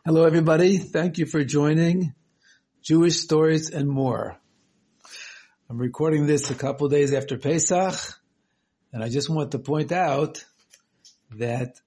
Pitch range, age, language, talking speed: 135-175 Hz, 60-79, English, 130 wpm